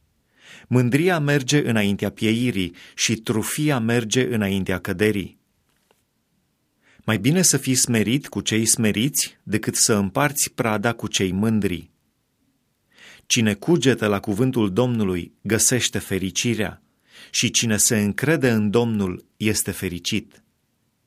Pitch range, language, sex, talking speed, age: 100-125 Hz, Romanian, male, 110 wpm, 30-49